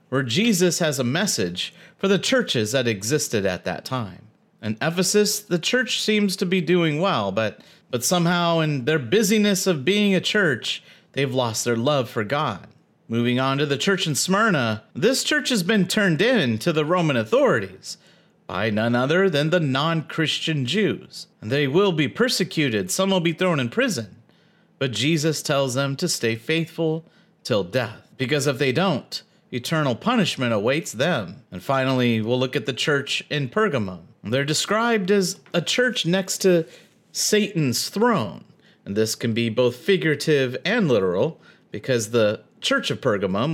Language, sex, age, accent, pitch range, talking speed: English, male, 40-59, American, 130-190 Hz, 165 wpm